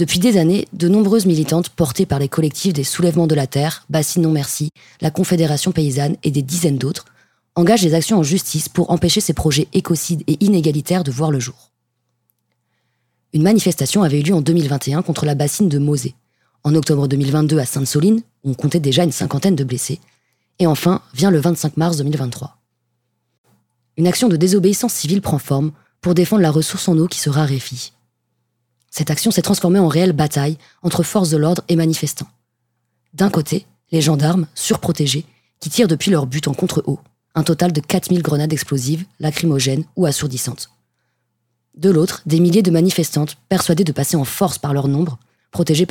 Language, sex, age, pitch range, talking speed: French, female, 20-39, 140-175 Hz, 180 wpm